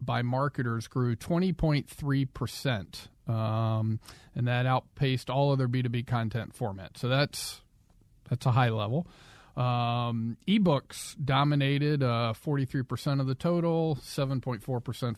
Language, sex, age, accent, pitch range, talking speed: English, male, 40-59, American, 115-140 Hz, 140 wpm